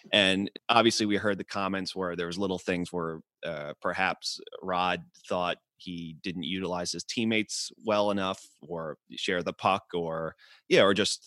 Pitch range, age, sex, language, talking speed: 85-100 Hz, 30-49, male, English, 165 wpm